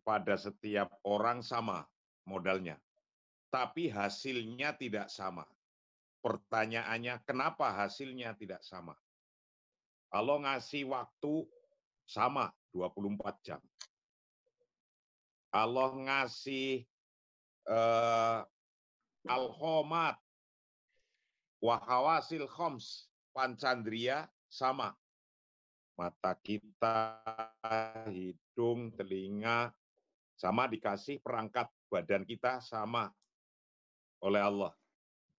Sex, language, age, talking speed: male, Indonesian, 50-69, 70 wpm